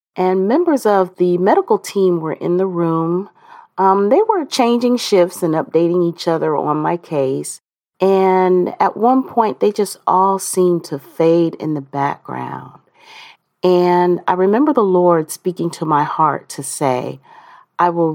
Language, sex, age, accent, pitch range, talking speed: English, female, 40-59, American, 165-220 Hz, 160 wpm